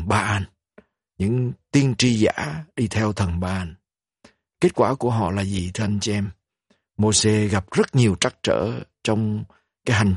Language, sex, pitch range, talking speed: Vietnamese, male, 100-120 Hz, 170 wpm